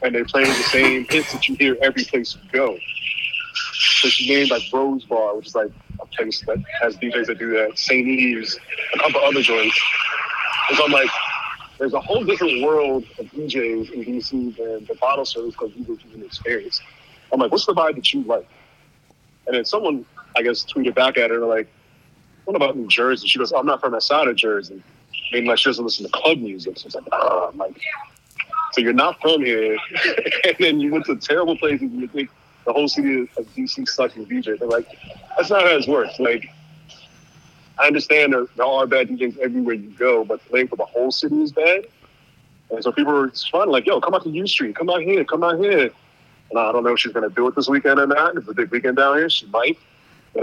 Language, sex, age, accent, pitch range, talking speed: English, male, 30-49, American, 120-155 Hz, 230 wpm